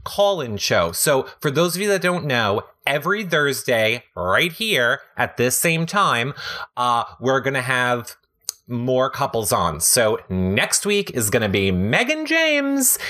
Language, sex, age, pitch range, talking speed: English, male, 30-49, 100-155 Hz, 150 wpm